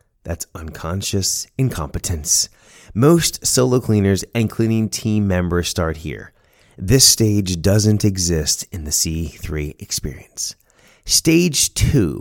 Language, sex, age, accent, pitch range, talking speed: English, male, 30-49, American, 90-135 Hz, 110 wpm